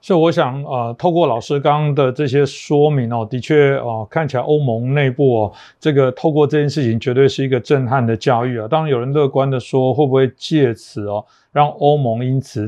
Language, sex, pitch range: Chinese, male, 120-145 Hz